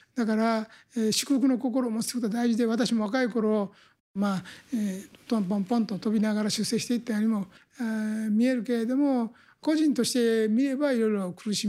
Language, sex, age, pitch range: Japanese, male, 60-79, 200-240 Hz